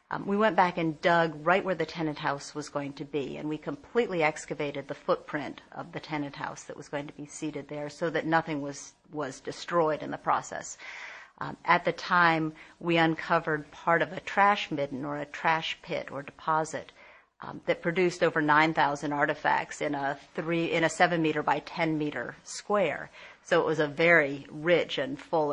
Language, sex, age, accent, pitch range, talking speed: English, female, 50-69, American, 150-170 Hz, 195 wpm